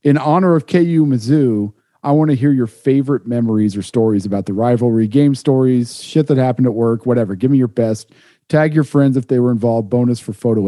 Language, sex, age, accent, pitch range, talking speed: English, male, 40-59, American, 115-140 Hz, 220 wpm